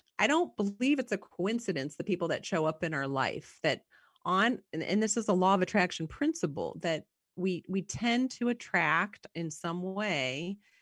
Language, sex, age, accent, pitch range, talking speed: English, female, 30-49, American, 140-185 Hz, 190 wpm